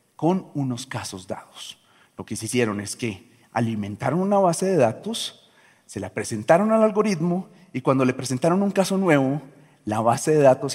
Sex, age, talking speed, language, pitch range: male, 40-59, 175 wpm, Spanish, 125-175 Hz